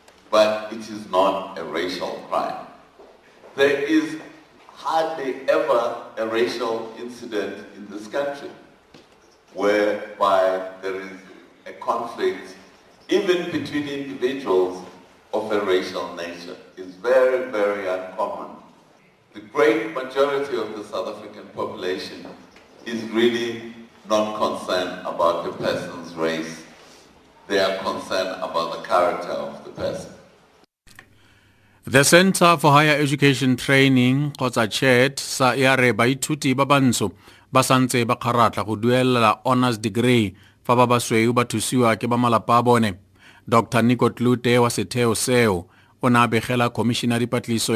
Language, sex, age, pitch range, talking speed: English, male, 60-79, 105-125 Hz, 110 wpm